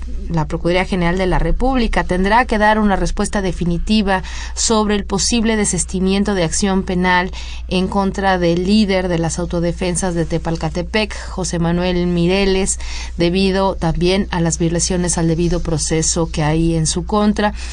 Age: 30-49